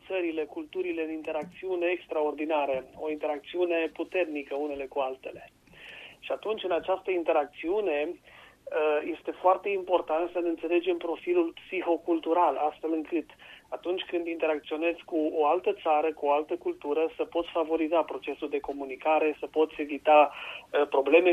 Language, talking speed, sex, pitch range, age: Romanian, 130 wpm, male, 150-175 Hz, 40-59